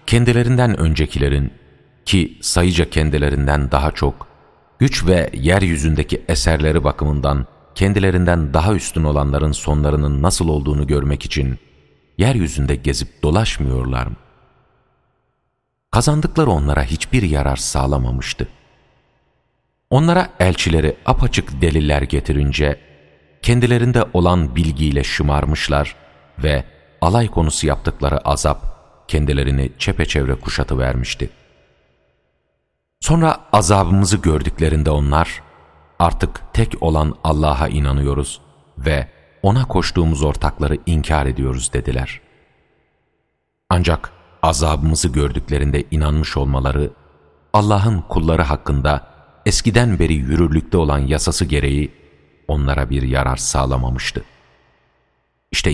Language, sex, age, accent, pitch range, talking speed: Turkish, male, 40-59, native, 70-85 Hz, 90 wpm